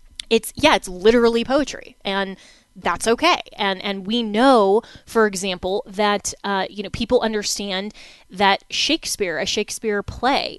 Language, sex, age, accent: English, female, 20-39, American